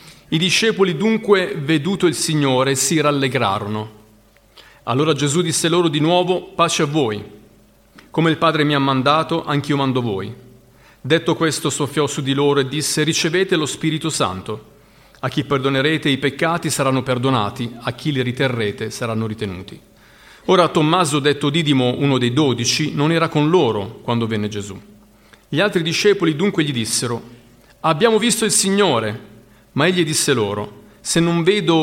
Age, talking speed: 40-59, 155 wpm